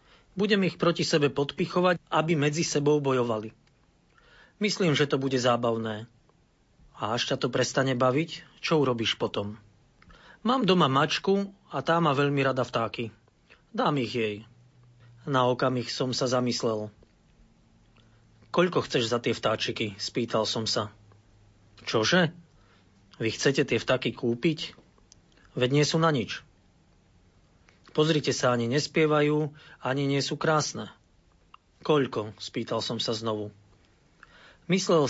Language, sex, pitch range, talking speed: Slovak, male, 115-150 Hz, 125 wpm